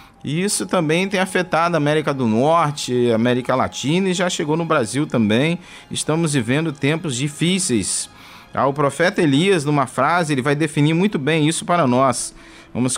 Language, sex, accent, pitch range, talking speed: Portuguese, male, Brazilian, 130-160 Hz, 160 wpm